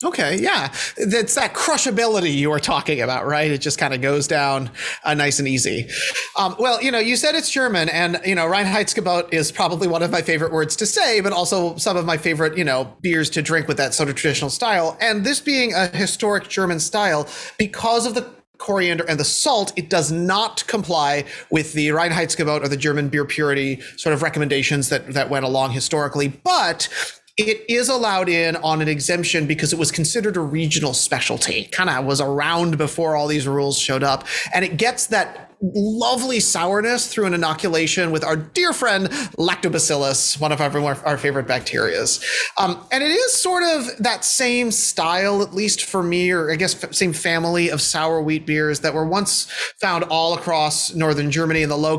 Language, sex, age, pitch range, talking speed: English, male, 30-49, 150-205 Hz, 195 wpm